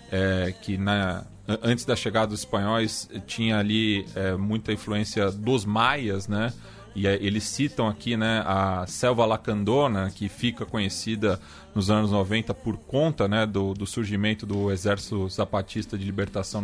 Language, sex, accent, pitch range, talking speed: Portuguese, male, Brazilian, 100-125 Hz, 150 wpm